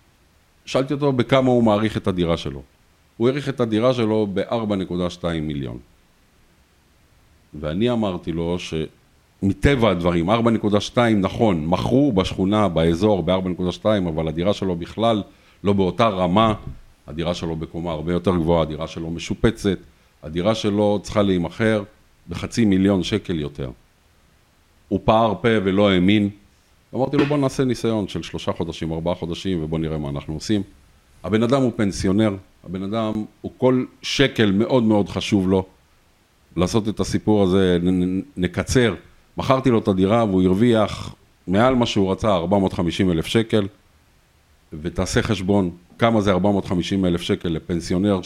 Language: Hebrew